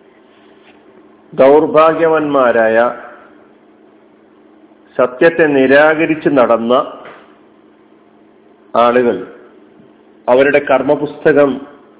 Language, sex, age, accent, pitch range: Malayalam, male, 40-59, native, 135-180 Hz